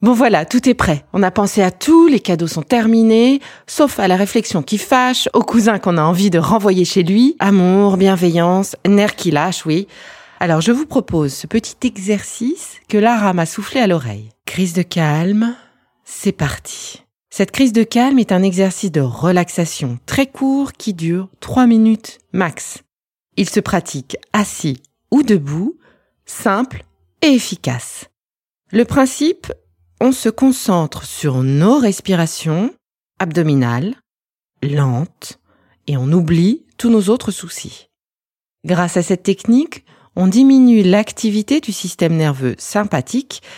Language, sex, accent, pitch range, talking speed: French, female, French, 155-225 Hz, 145 wpm